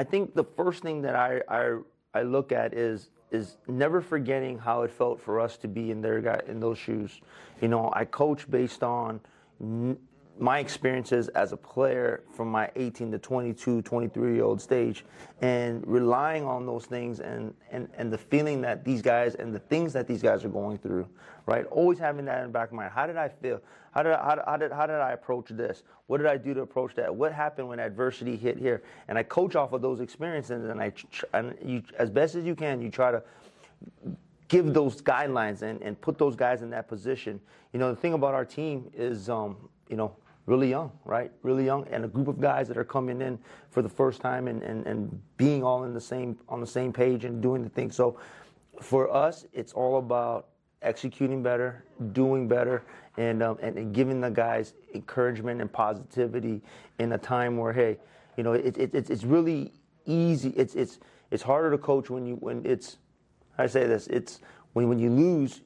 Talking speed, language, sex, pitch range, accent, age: 215 wpm, English, male, 115-135 Hz, American, 30-49